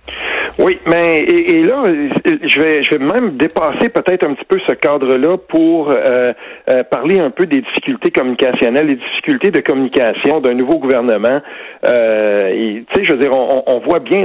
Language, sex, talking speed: French, male, 175 wpm